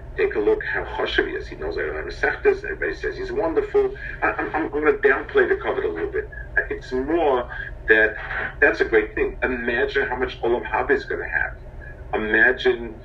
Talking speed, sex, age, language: 185 wpm, male, 50-69, English